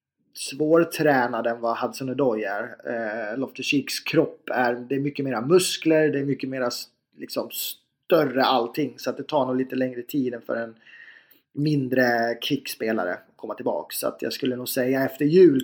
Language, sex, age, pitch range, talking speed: English, male, 30-49, 125-155 Hz, 175 wpm